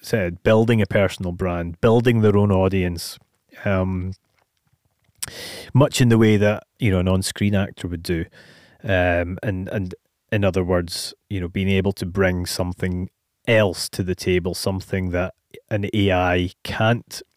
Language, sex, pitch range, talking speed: English, male, 95-110 Hz, 150 wpm